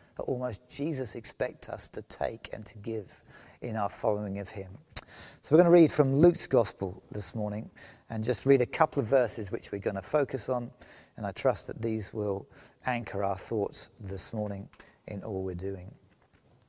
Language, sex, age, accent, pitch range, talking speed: English, male, 40-59, British, 110-155 Hz, 185 wpm